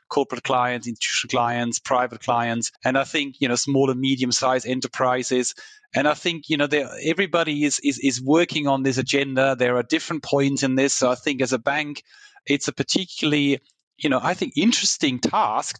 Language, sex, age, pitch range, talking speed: English, male, 30-49, 125-160 Hz, 180 wpm